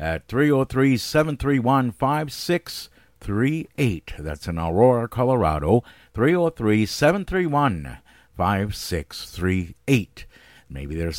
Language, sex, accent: English, male, American